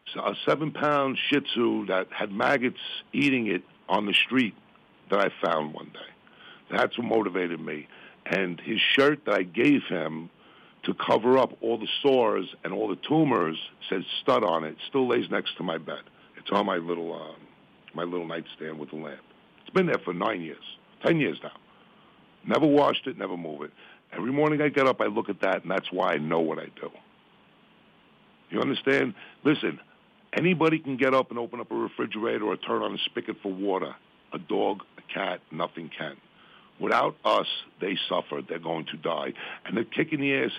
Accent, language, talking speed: American, English, 195 wpm